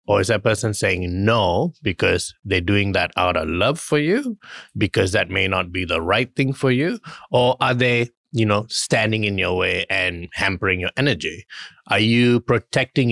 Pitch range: 100-125 Hz